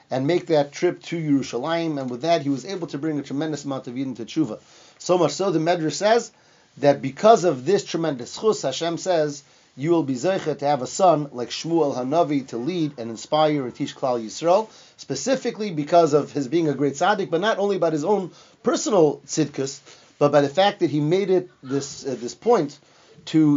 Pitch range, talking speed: 135-175 Hz, 215 wpm